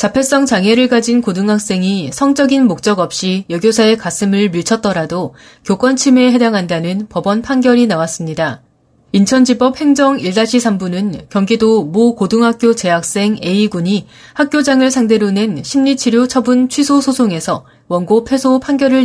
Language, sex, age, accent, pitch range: Korean, female, 30-49, native, 185-255 Hz